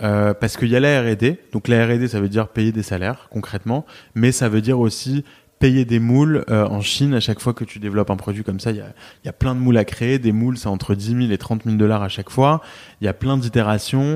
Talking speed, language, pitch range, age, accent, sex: 280 wpm, French, 105-125 Hz, 20-39, French, male